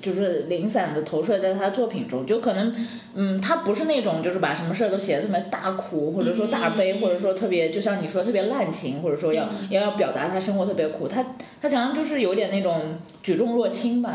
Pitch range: 185-235 Hz